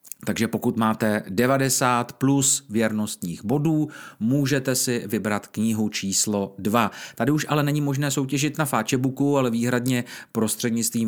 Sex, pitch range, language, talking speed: male, 105-135 Hz, Czech, 130 wpm